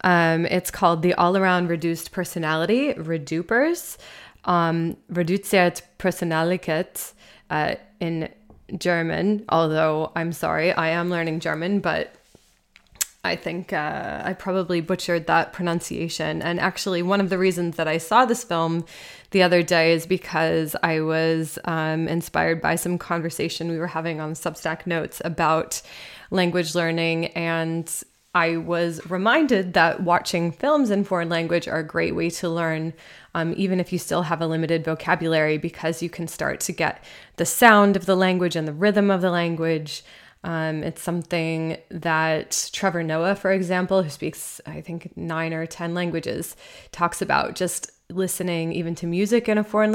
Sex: female